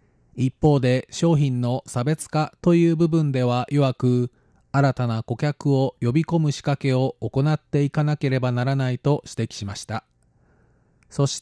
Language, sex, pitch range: Japanese, male, 120-145 Hz